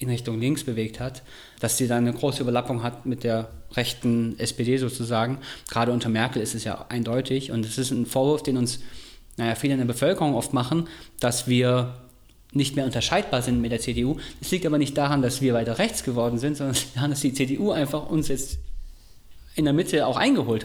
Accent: German